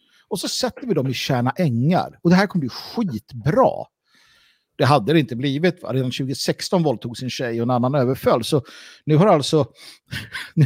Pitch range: 140-190 Hz